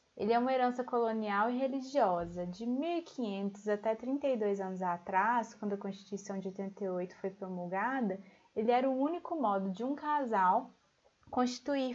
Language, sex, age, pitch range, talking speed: Portuguese, female, 20-39, 205-260 Hz, 145 wpm